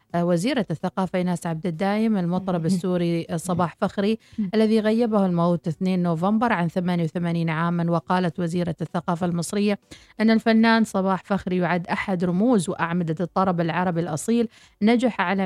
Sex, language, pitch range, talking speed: female, Arabic, 175-215 Hz, 130 wpm